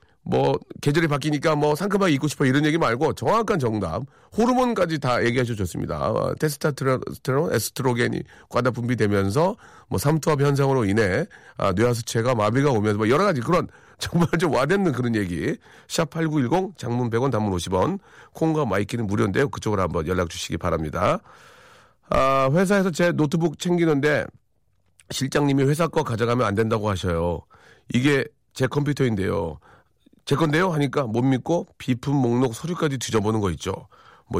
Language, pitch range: Korean, 110-155 Hz